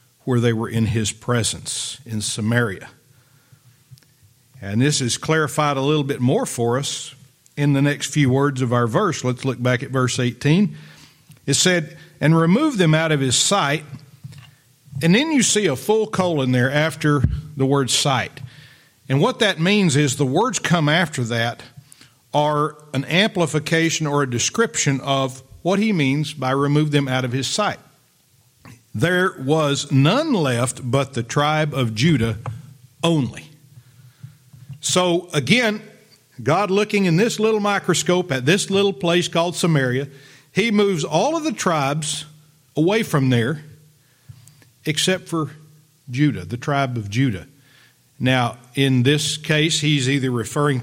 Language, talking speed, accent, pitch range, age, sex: English, 150 wpm, American, 130-155 Hz, 50-69, male